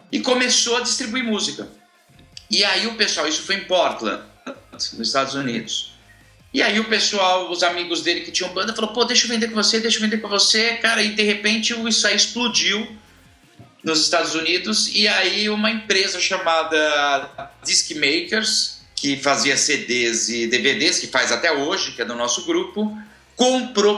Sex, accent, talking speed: male, Brazilian, 175 wpm